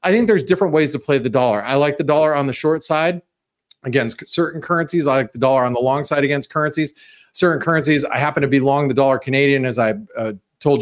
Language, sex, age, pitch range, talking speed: English, male, 40-59, 130-165 Hz, 245 wpm